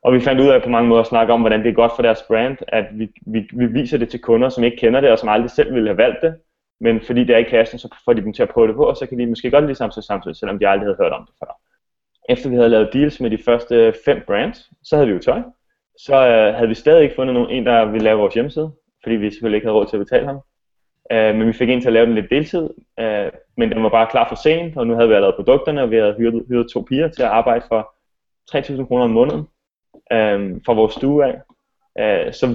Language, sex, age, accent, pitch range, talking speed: Danish, male, 20-39, native, 115-150 Hz, 290 wpm